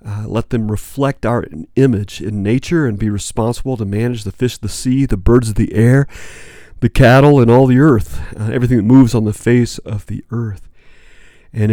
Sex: male